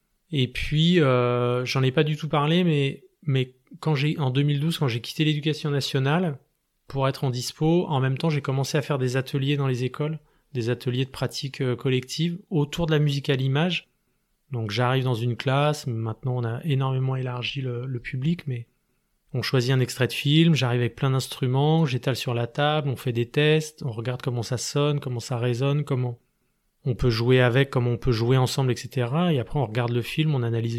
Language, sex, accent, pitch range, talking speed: French, male, French, 125-150 Hz, 205 wpm